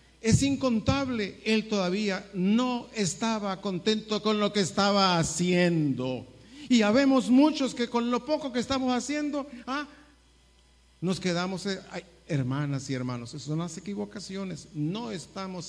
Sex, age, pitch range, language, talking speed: male, 50-69, 135-215 Hz, Spanish, 135 wpm